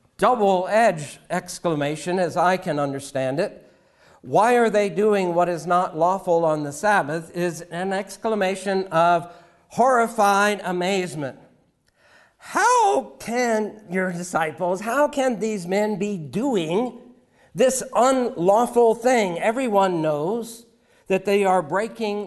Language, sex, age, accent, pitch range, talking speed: English, male, 60-79, American, 155-210 Hz, 120 wpm